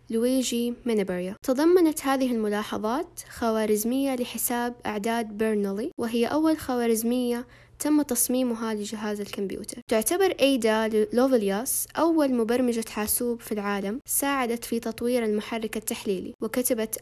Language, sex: Arabic, female